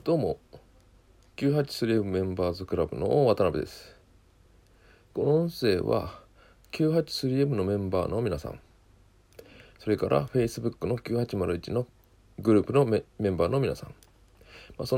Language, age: Japanese, 40-59